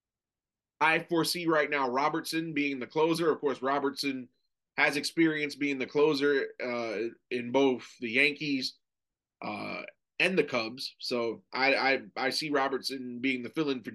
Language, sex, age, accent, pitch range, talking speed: English, male, 30-49, American, 135-165 Hz, 155 wpm